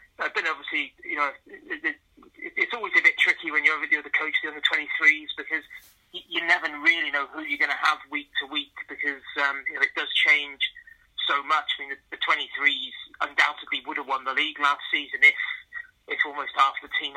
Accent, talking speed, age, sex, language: British, 215 wpm, 30-49, male, English